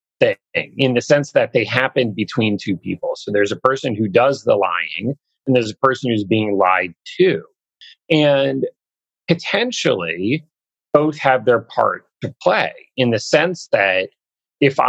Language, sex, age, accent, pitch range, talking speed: English, male, 30-49, American, 115-180 Hz, 155 wpm